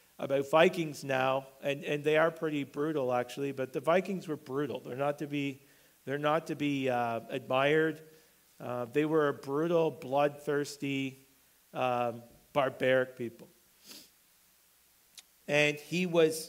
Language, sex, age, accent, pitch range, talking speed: English, male, 40-59, American, 140-165 Hz, 135 wpm